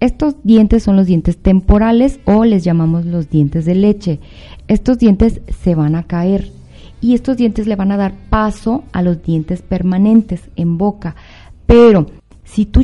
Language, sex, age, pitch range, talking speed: Spanish, female, 30-49, 170-220 Hz, 170 wpm